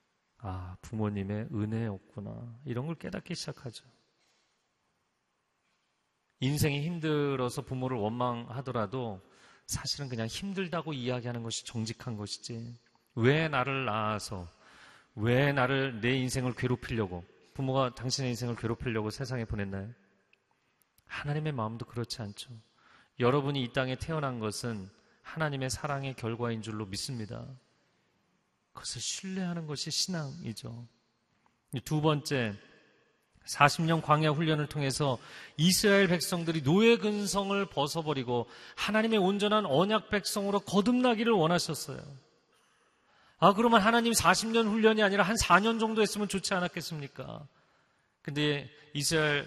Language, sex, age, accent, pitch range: Korean, male, 40-59, native, 120-165 Hz